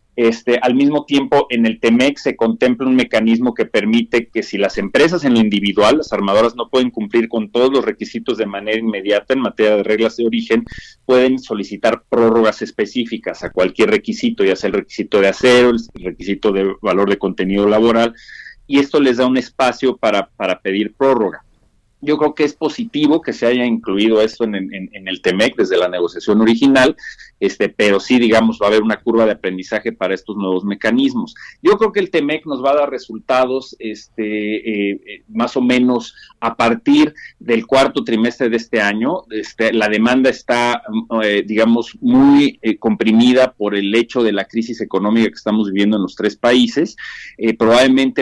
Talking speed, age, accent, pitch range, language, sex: 185 wpm, 40-59, Mexican, 110-130 Hz, Spanish, male